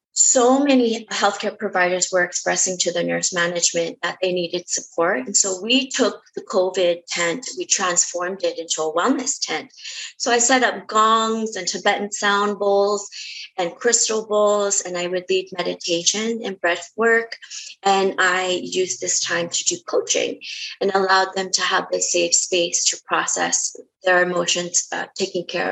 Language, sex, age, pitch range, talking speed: English, female, 20-39, 175-205 Hz, 165 wpm